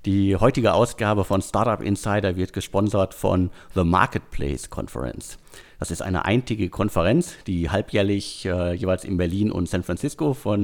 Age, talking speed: 50-69, 150 wpm